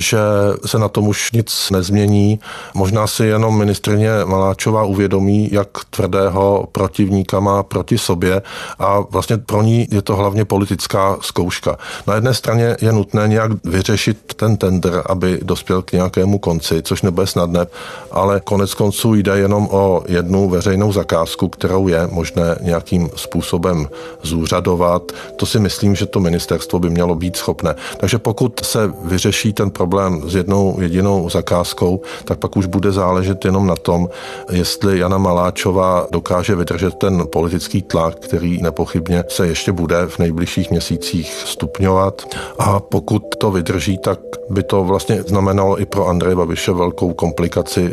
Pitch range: 90-105 Hz